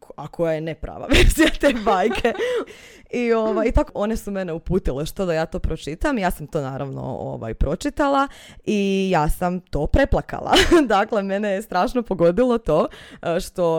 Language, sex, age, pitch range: Croatian, female, 20-39, 160-220 Hz